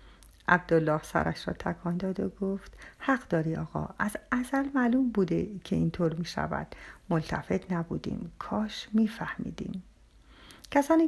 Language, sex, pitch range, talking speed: Persian, female, 170-240 Hz, 130 wpm